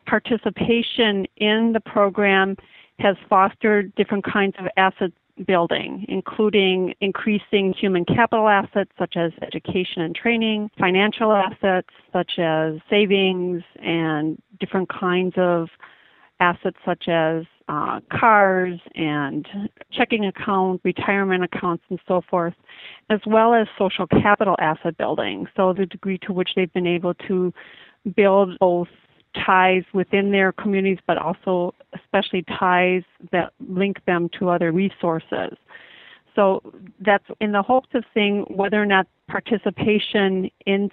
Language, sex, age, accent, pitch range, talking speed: English, female, 40-59, American, 180-205 Hz, 130 wpm